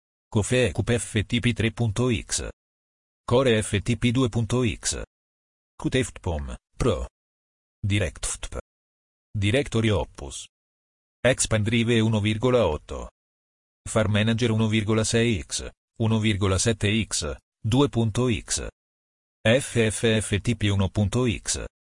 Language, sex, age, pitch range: Italian, male, 40-59, 70-115 Hz